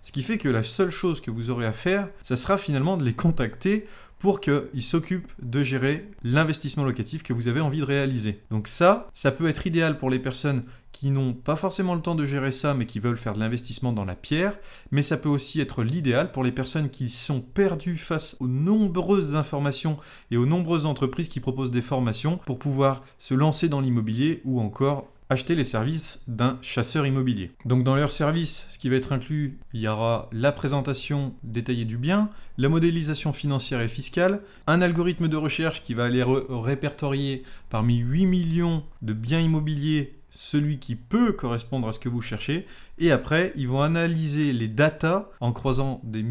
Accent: French